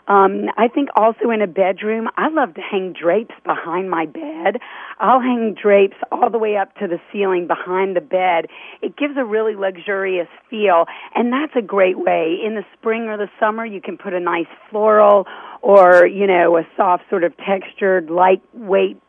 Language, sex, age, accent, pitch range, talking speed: English, female, 40-59, American, 185-225 Hz, 190 wpm